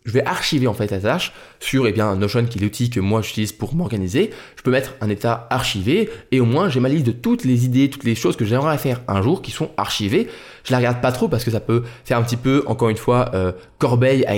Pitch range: 110-140 Hz